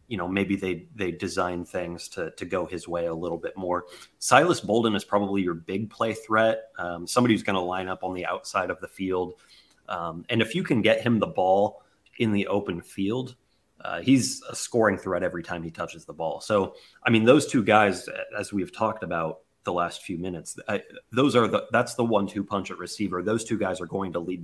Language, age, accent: English, 30-49, American